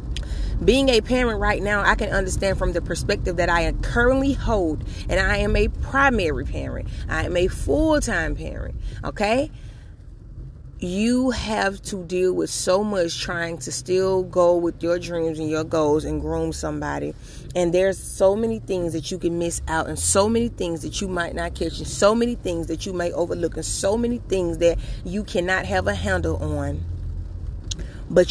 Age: 30-49